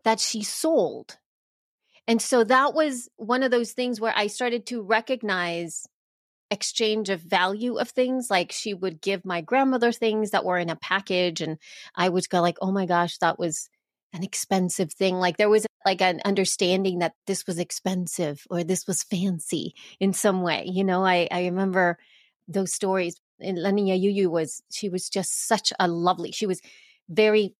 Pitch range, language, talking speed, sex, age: 180-220 Hz, English, 180 wpm, female, 30-49